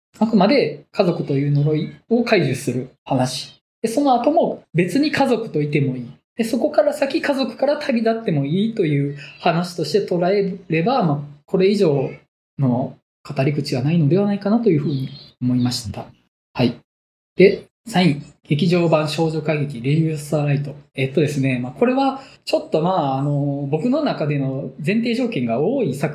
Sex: male